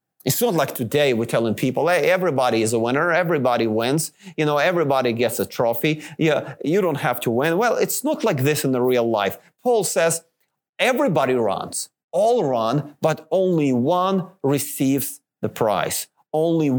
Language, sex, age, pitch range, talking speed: English, male, 30-49, 135-185 Hz, 170 wpm